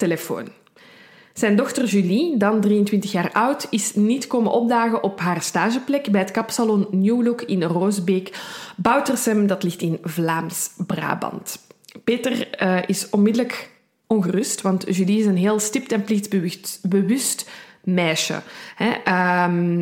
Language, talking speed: Dutch, 130 wpm